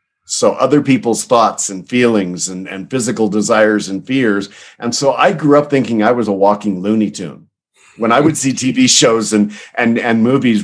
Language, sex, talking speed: English, male, 190 wpm